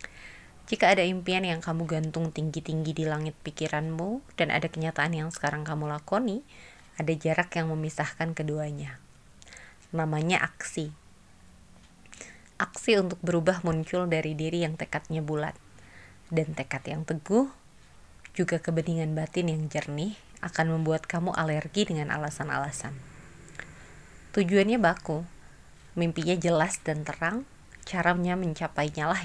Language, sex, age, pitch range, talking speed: Indonesian, female, 20-39, 150-175 Hz, 115 wpm